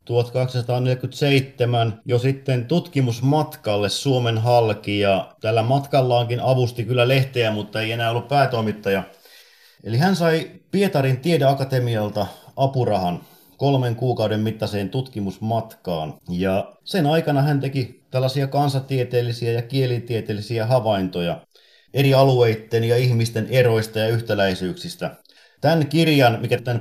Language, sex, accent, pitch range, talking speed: Finnish, male, native, 110-135 Hz, 105 wpm